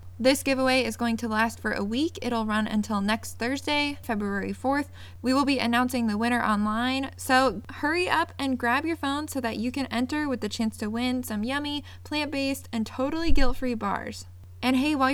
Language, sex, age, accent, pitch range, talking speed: English, female, 20-39, American, 215-260 Hz, 200 wpm